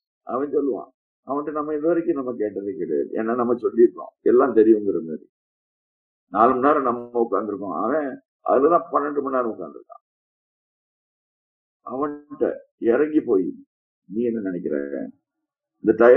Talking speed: 60 wpm